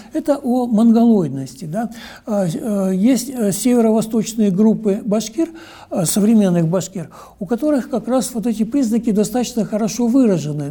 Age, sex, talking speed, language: 60-79, male, 110 wpm, Russian